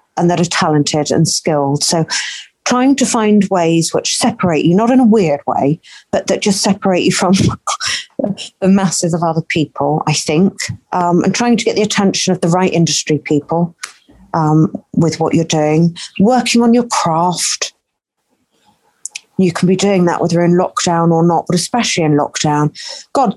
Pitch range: 160-230 Hz